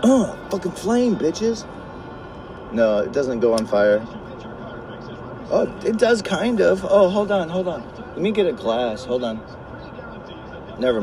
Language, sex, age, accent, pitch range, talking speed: English, male, 30-49, American, 105-140 Hz, 150 wpm